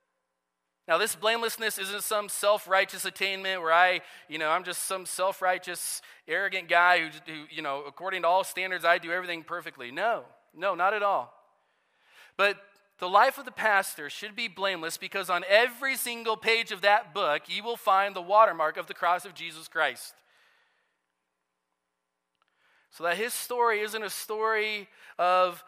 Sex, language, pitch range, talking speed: male, English, 155-200 Hz, 165 wpm